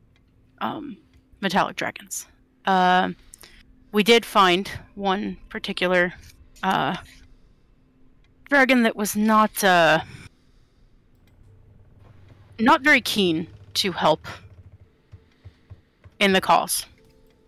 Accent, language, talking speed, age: American, English, 80 wpm, 30-49